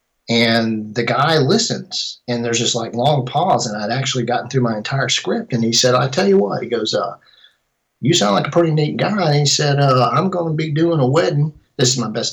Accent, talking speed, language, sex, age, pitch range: American, 245 wpm, English, male, 40-59, 120-140 Hz